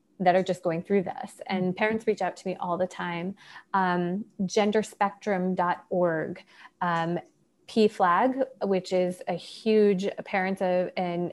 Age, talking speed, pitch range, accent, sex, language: 30-49, 125 wpm, 180-200 Hz, American, female, English